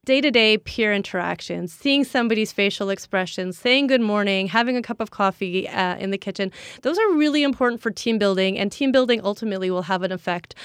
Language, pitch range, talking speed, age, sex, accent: English, 195-250 Hz, 190 wpm, 30-49, female, American